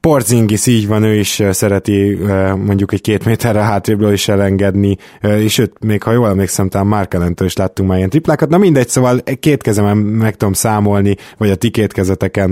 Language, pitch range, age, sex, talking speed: Hungarian, 100-115 Hz, 20-39, male, 175 wpm